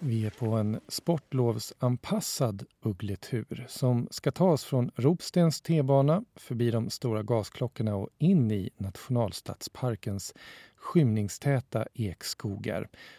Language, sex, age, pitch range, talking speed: Swedish, male, 40-59, 110-155 Hz, 100 wpm